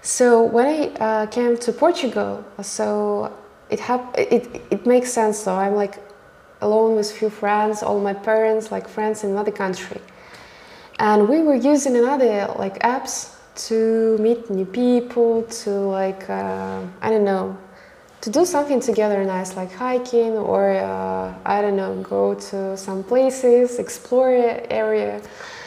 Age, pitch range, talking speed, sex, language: 20-39, 200-235 Hz, 145 wpm, female, English